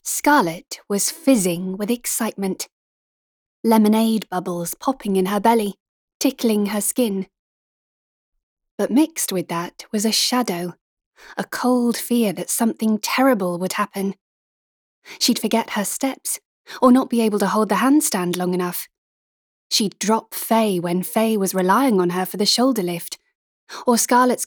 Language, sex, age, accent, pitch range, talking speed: English, female, 20-39, British, 190-250 Hz, 140 wpm